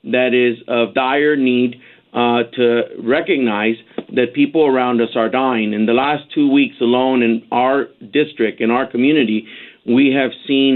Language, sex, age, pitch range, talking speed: English, male, 50-69, 115-130 Hz, 160 wpm